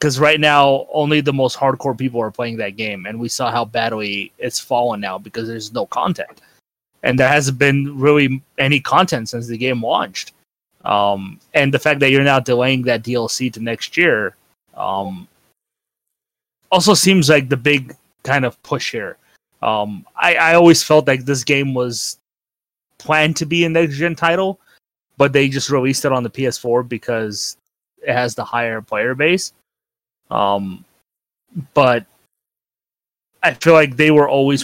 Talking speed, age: 165 wpm, 20-39